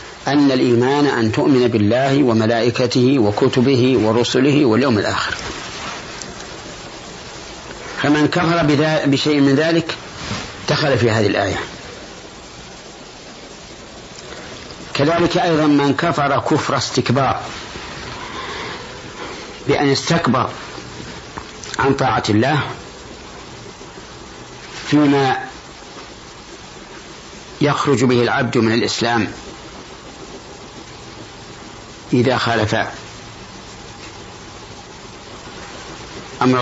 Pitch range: 115-145 Hz